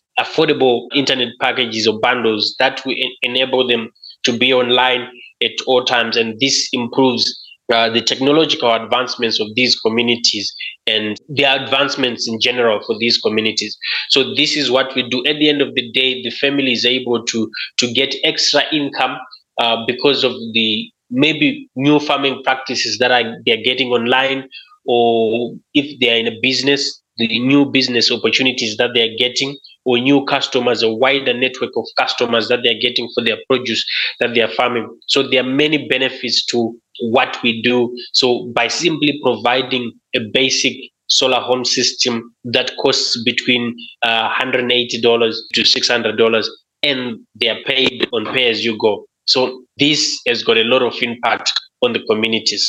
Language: English